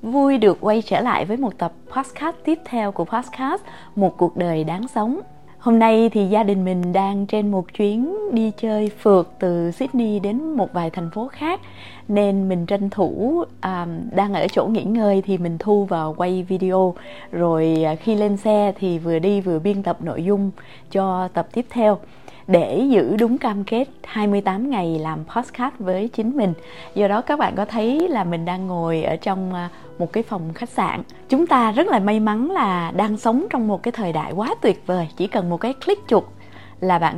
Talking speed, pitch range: 200 wpm, 180-235 Hz